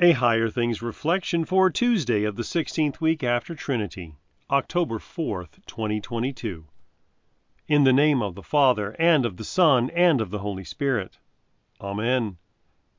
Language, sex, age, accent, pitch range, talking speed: English, male, 40-59, American, 100-135 Hz, 145 wpm